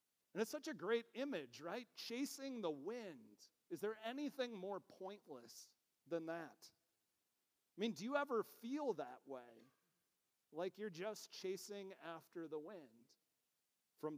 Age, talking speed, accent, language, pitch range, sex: 40-59, 140 wpm, American, English, 160-220 Hz, male